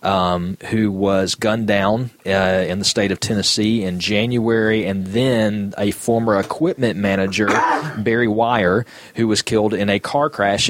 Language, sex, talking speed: English, male, 155 wpm